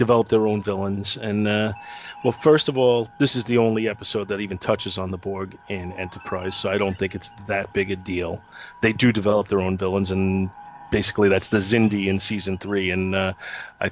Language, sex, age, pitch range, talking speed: English, male, 30-49, 100-135 Hz, 210 wpm